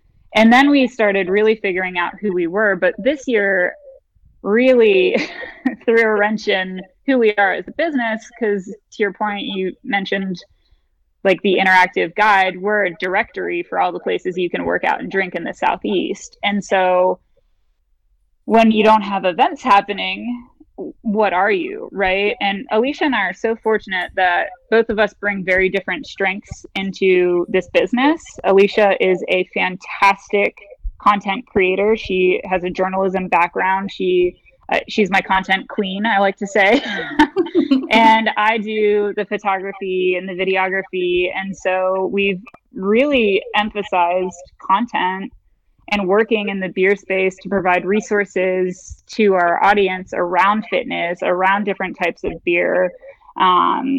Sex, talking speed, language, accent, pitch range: female, 150 wpm, English, American, 185-220 Hz